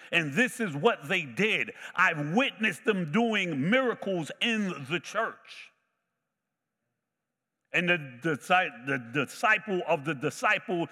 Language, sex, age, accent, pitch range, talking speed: English, male, 60-79, American, 155-210 Hz, 120 wpm